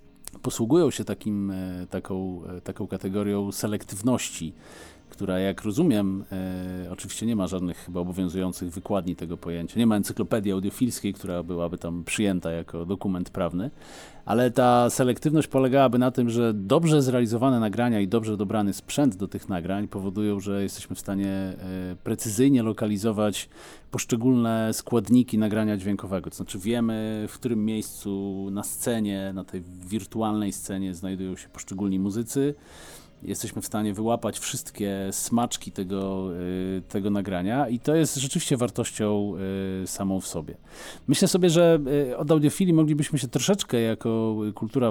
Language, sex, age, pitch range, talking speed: Polish, male, 40-59, 95-115 Hz, 135 wpm